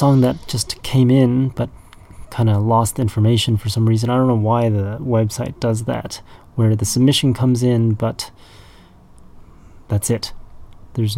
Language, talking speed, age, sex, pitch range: English, 160 wpm, 30-49, male, 110-125 Hz